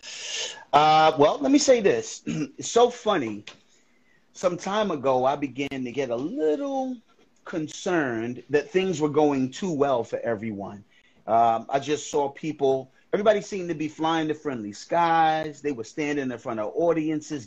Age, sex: 30-49, male